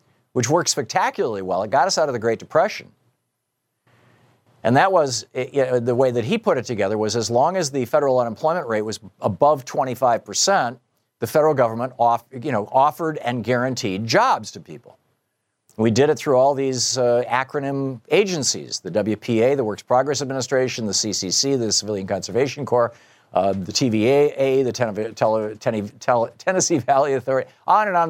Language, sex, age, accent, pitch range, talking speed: English, male, 50-69, American, 110-140 Hz, 175 wpm